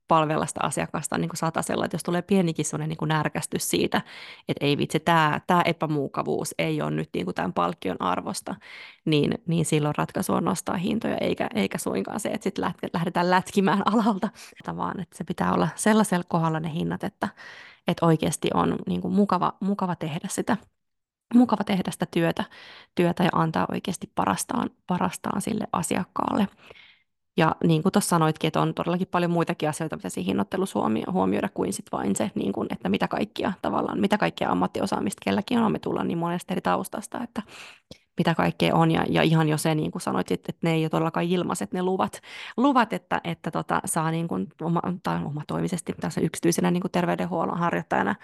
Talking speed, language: 180 wpm, Finnish